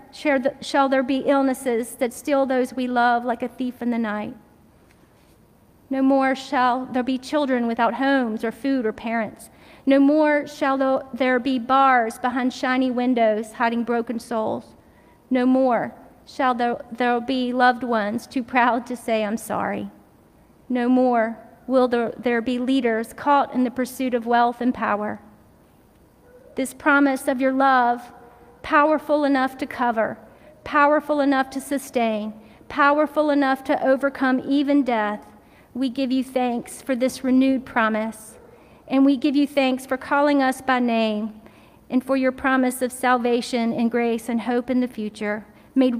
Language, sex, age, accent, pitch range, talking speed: English, female, 40-59, American, 235-265 Hz, 155 wpm